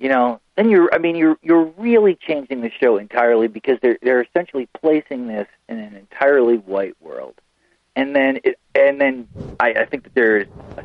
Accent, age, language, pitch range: American, 40-59, English, 115-155 Hz